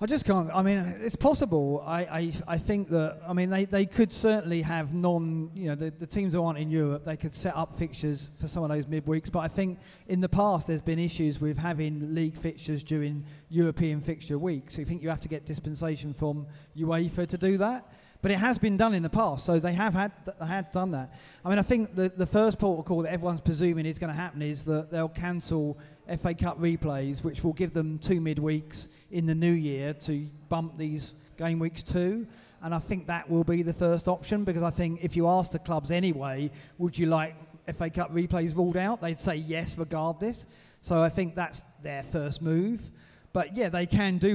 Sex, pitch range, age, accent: male, 155-180 Hz, 30-49, British